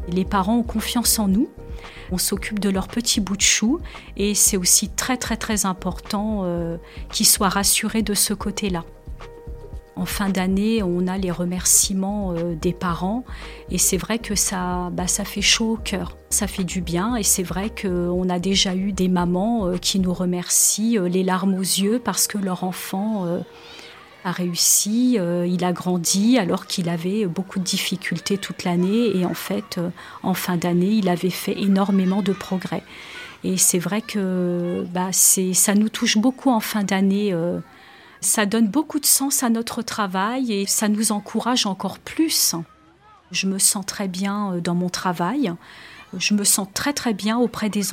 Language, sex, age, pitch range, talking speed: French, female, 40-59, 180-215 Hz, 180 wpm